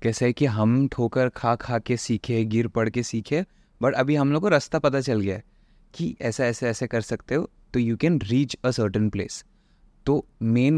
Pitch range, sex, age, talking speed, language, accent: 115-140 Hz, male, 20-39, 210 wpm, English, Indian